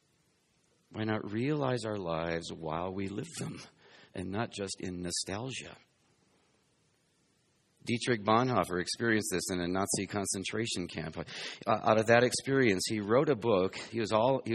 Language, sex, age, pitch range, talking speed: English, male, 50-69, 95-140 Hz, 135 wpm